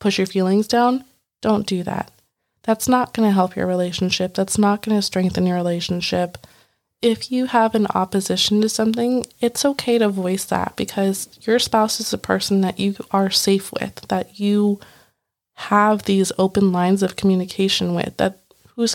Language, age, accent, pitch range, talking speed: English, 20-39, American, 185-220 Hz, 175 wpm